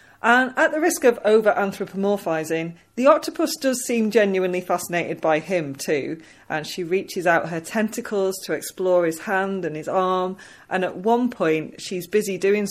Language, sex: English, female